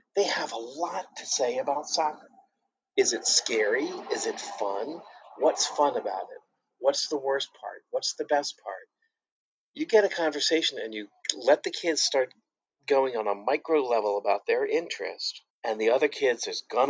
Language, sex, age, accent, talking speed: English, male, 50-69, American, 180 wpm